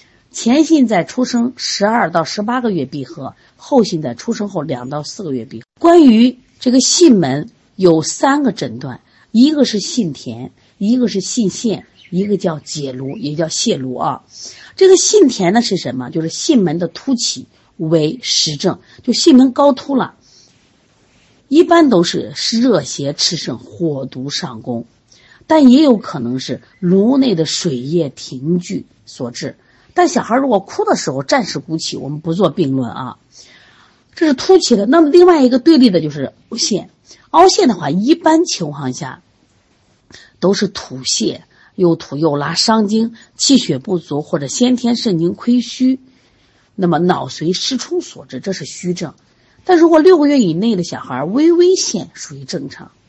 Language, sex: Chinese, female